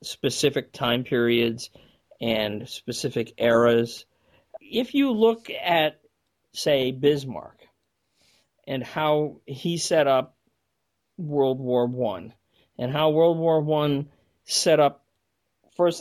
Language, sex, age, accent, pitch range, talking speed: English, male, 40-59, American, 120-155 Hz, 105 wpm